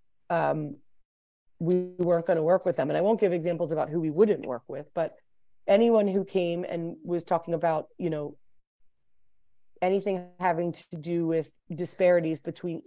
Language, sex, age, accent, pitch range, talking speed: English, female, 30-49, American, 155-180 Hz, 170 wpm